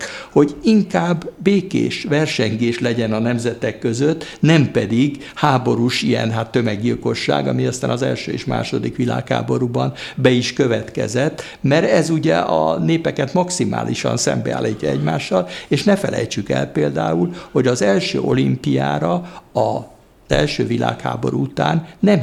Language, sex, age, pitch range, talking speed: Hungarian, male, 60-79, 110-150 Hz, 125 wpm